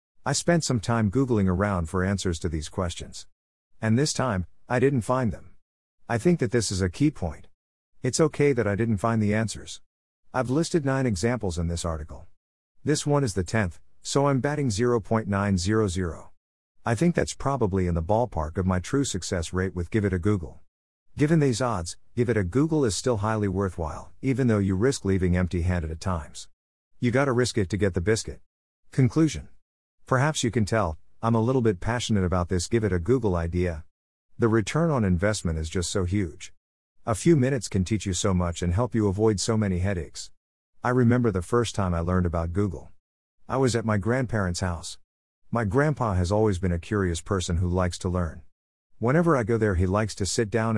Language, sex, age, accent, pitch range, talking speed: English, male, 50-69, American, 90-120 Hz, 200 wpm